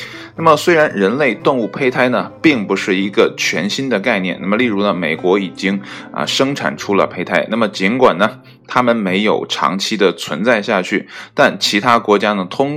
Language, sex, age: Chinese, male, 20-39